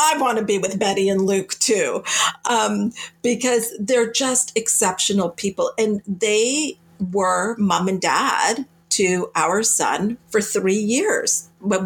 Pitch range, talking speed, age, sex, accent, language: 185-230 Hz, 140 wpm, 50-69, female, American, English